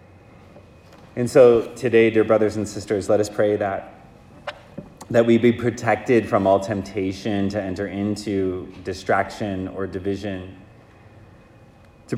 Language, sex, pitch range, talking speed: English, male, 90-110 Hz, 125 wpm